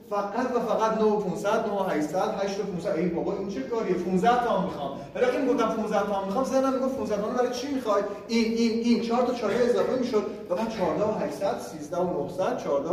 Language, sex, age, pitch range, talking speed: Persian, male, 30-49, 155-215 Hz, 185 wpm